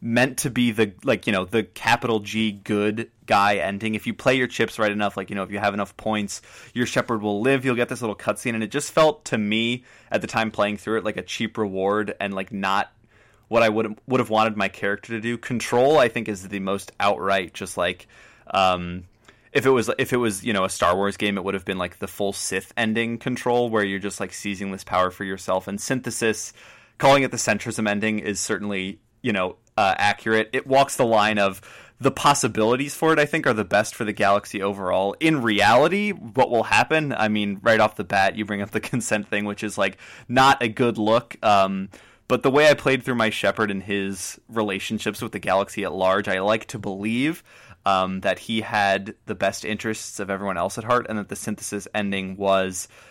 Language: English